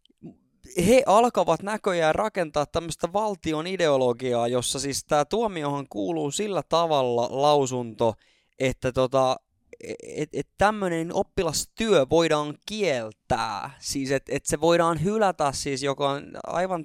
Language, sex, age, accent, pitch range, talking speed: Finnish, male, 20-39, native, 130-180 Hz, 120 wpm